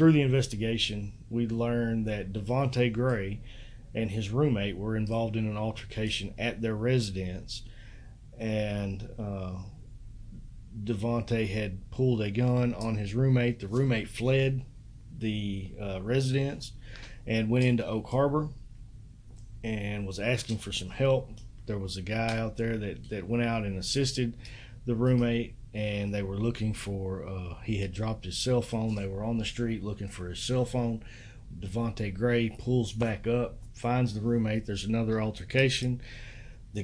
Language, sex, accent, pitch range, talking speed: English, male, American, 110-120 Hz, 155 wpm